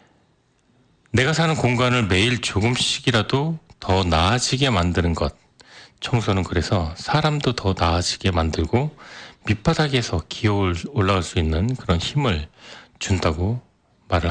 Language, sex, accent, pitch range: Korean, male, native, 90-125 Hz